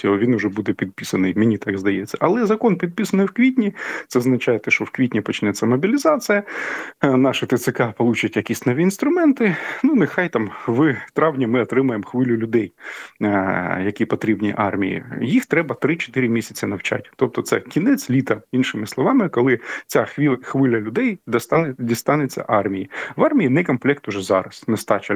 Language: Ukrainian